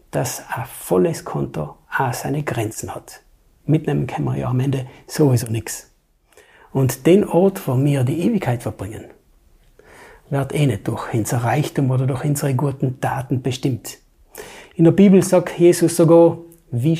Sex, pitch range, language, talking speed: male, 130-170 Hz, German, 150 wpm